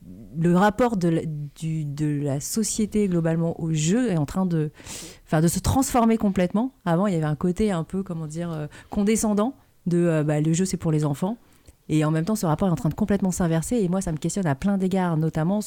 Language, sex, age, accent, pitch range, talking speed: French, female, 30-49, French, 150-185 Hz, 240 wpm